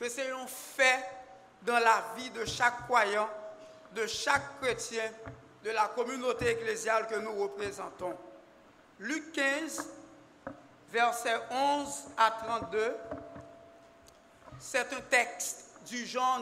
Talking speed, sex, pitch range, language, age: 115 wpm, male, 230-275 Hz, French, 60-79